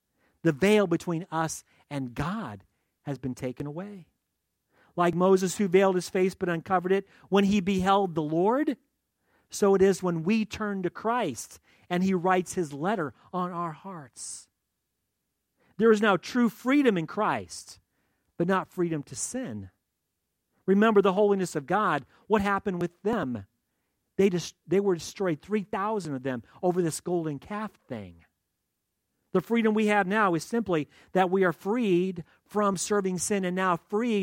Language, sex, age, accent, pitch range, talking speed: English, male, 40-59, American, 145-215 Hz, 155 wpm